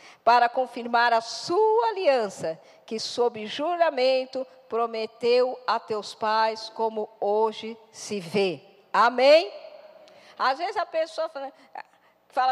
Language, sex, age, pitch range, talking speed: Portuguese, female, 50-69, 255-335 Hz, 110 wpm